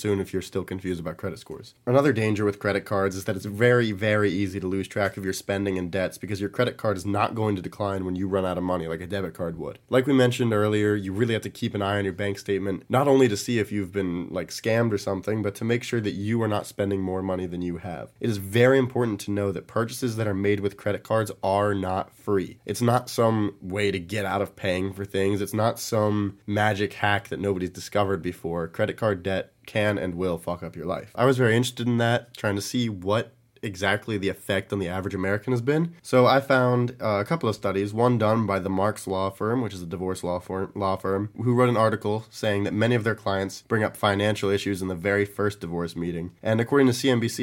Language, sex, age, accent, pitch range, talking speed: English, male, 20-39, American, 95-115 Hz, 255 wpm